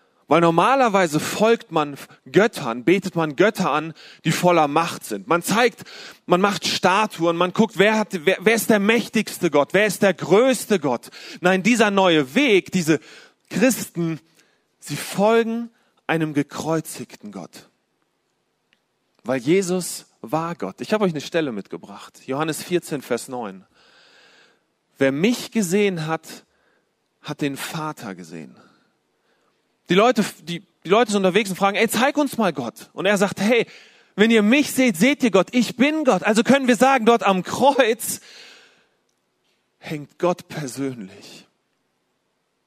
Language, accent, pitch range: German, German, 165-235 Hz